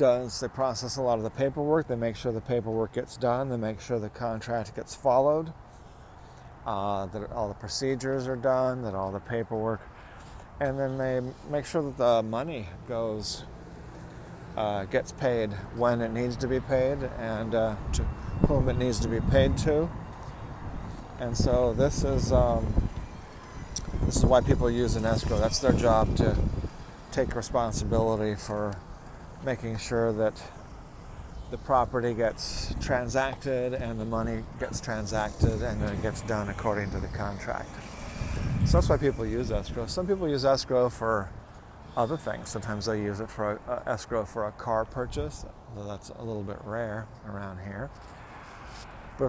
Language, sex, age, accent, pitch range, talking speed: English, male, 40-59, American, 105-125 Hz, 160 wpm